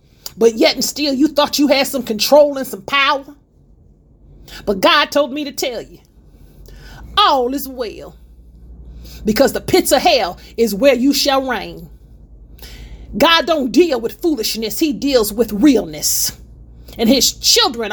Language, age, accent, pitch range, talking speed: English, 40-59, American, 215-290 Hz, 150 wpm